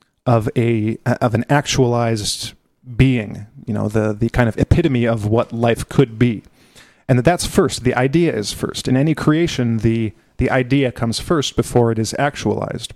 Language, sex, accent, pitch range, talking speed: English, male, American, 115-135 Hz, 175 wpm